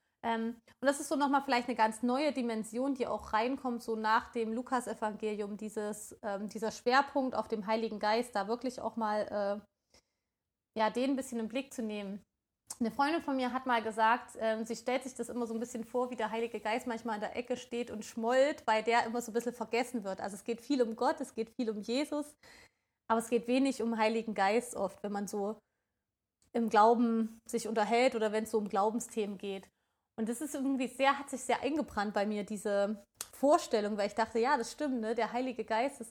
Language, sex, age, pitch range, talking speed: German, female, 20-39, 220-250 Hz, 220 wpm